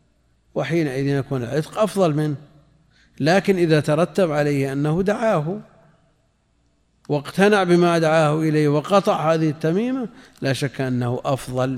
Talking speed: 115 wpm